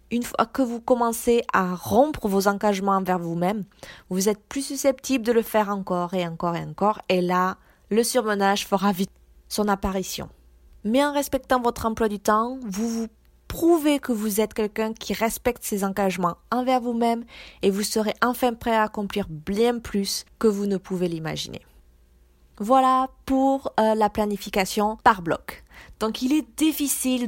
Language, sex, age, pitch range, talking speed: French, female, 20-39, 195-245 Hz, 165 wpm